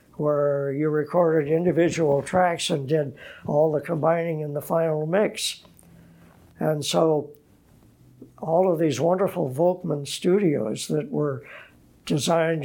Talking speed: 120 wpm